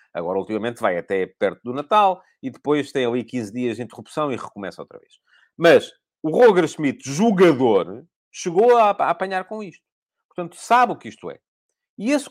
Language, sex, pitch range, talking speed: Portuguese, male, 130-195 Hz, 185 wpm